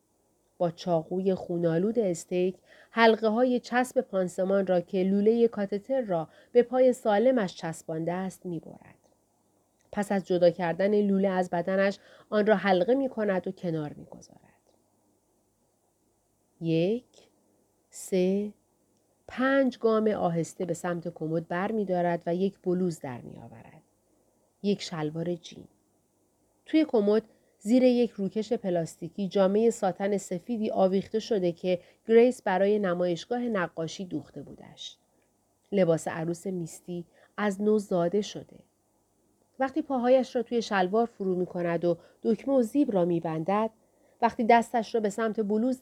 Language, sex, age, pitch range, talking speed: Persian, female, 40-59, 175-230 Hz, 125 wpm